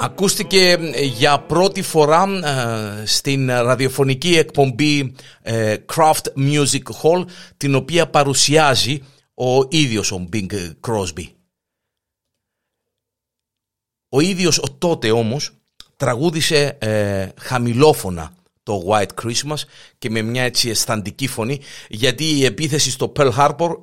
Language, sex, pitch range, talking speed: Greek, male, 115-155 Hz, 100 wpm